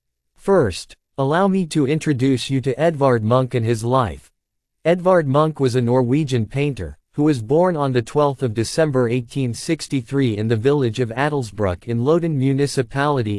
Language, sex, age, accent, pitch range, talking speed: English, male, 50-69, American, 115-150 Hz, 150 wpm